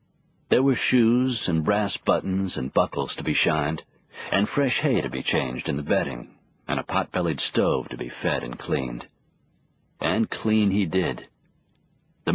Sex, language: male, English